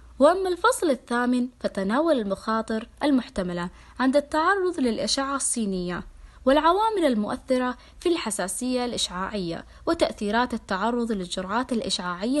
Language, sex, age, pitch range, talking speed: Arabic, female, 20-39, 200-285 Hz, 90 wpm